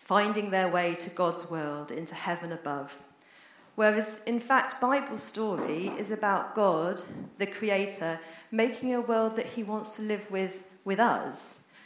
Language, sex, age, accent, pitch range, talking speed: English, female, 40-59, British, 175-220 Hz, 150 wpm